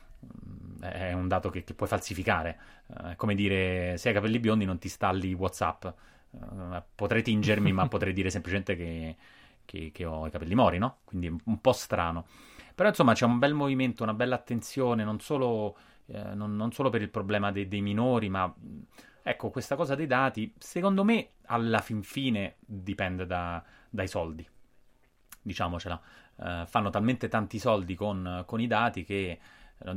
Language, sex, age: Italian, male, 20-39